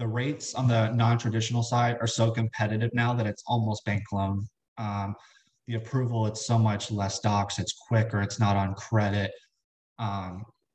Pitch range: 105-120 Hz